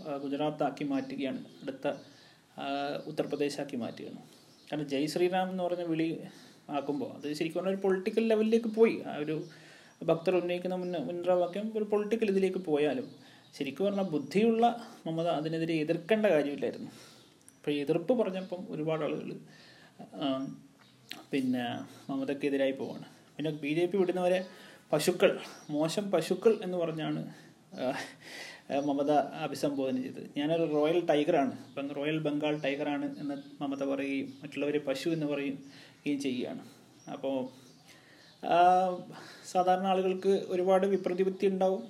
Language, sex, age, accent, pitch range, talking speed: Malayalam, male, 30-49, native, 145-180 Hz, 110 wpm